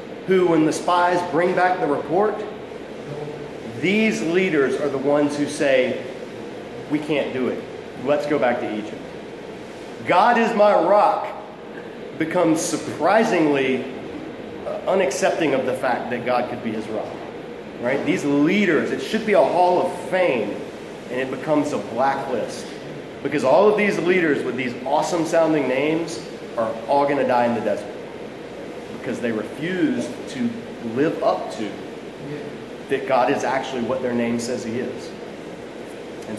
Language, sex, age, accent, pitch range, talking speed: English, male, 30-49, American, 135-180 Hz, 150 wpm